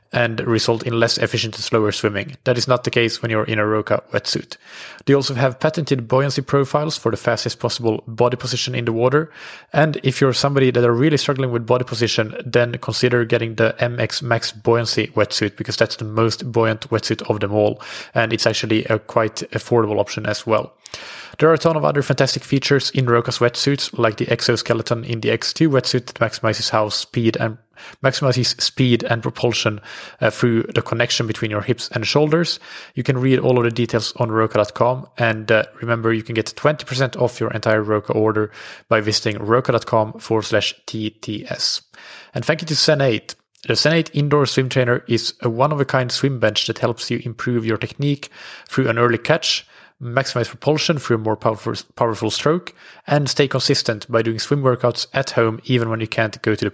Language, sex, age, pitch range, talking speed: English, male, 20-39, 115-135 Hz, 195 wpm